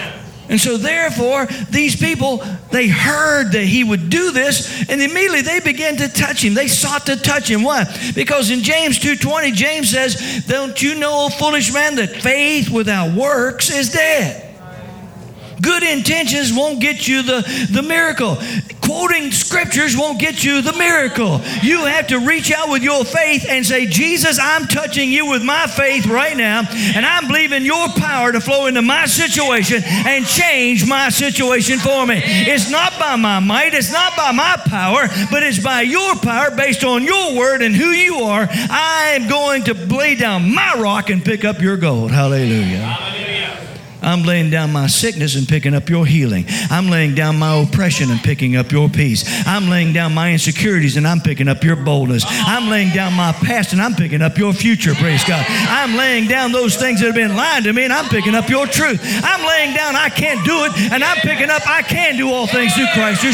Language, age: English, 50-69